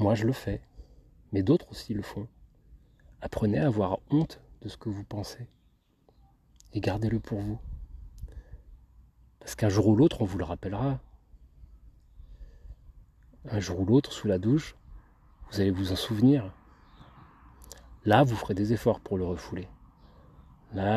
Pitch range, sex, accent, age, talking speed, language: 75-110 Hz, male, French, 30-49, 150 wpm, French